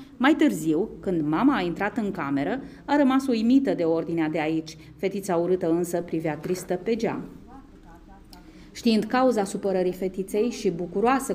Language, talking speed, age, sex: Romanian, 150 wpm, 30-49, female